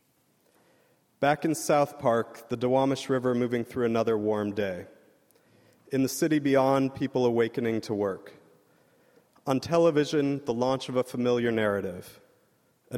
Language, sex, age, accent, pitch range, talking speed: English, male, 40-59, American, 115-135 Hz, 135 wpm